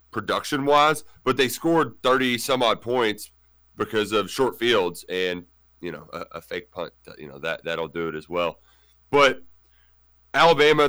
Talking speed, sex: 160 wpm, male